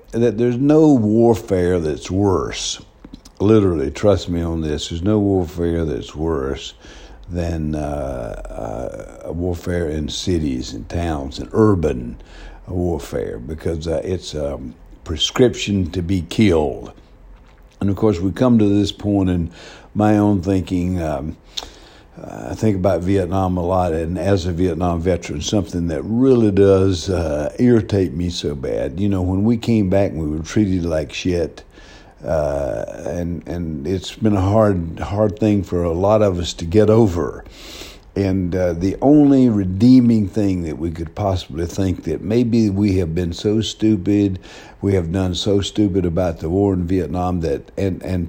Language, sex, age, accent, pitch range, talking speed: English, male, 60-79, American, 85-100 Hz, 160 wpm